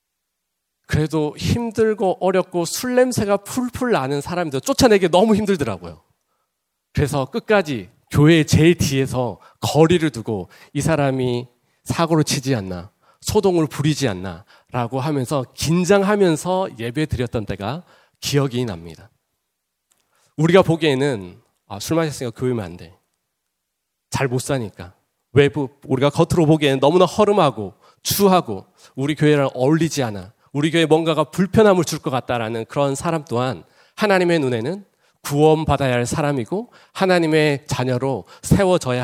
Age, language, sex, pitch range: 40-59, Korean, male, 125-180 Hz